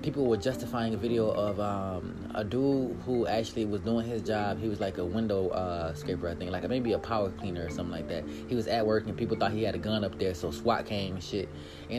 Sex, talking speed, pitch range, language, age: male, 260 wpm, 105-145 Hz, English, 20-39